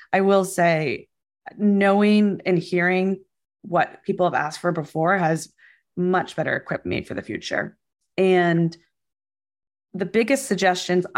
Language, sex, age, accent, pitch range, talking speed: English, female, 20-39, American, 165-195 Hz, 130 wpm